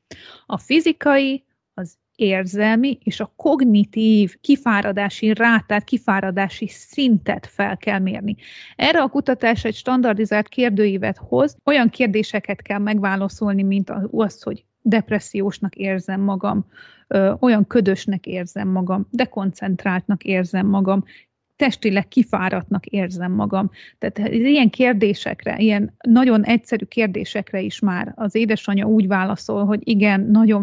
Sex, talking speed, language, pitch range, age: female, 115 wpm, Hungarian, 195-235 Hz, 30-49